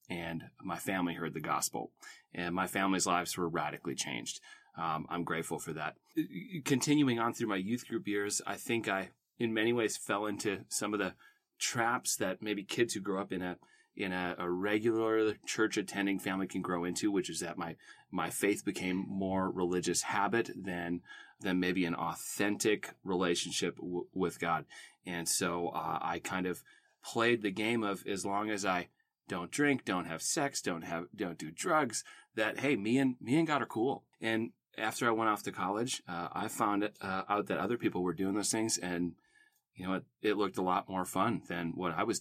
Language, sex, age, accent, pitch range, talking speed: English, male, 30-49, American, 90-105 Hz, 200 wpm